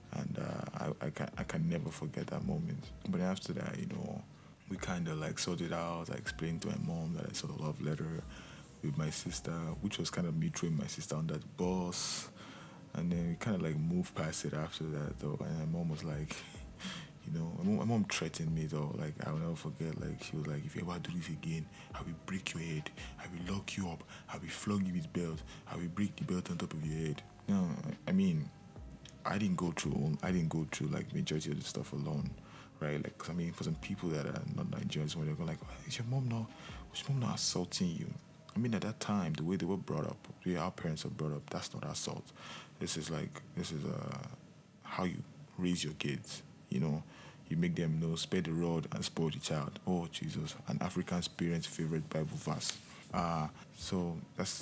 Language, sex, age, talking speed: English, male, 20-39, 235 wpm